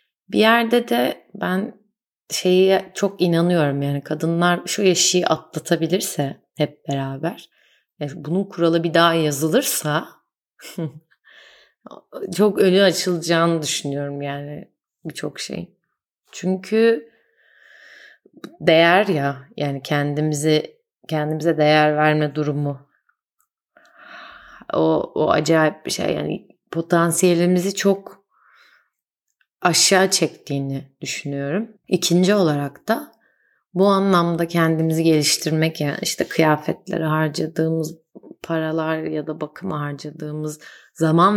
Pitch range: 150-195 Hz